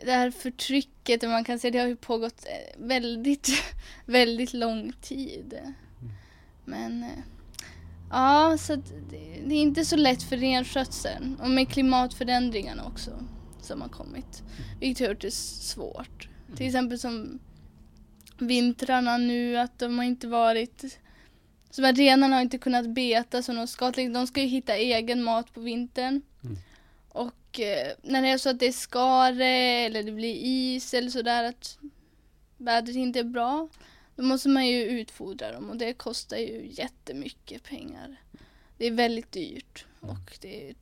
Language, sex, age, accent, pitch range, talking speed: Swedish, female, 10-29, native, 230-260 Hz, 155 wpm